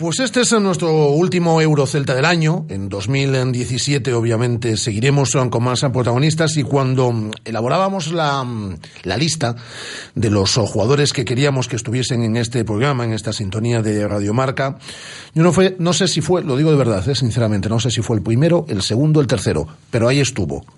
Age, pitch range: 40-59, 115-150 Hz